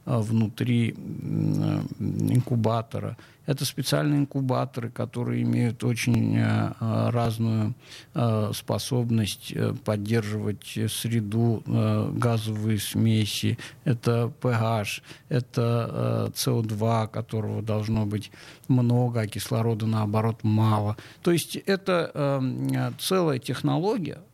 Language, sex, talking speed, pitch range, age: Russian, male, 75 wpm, 110-140 Hz, 50-69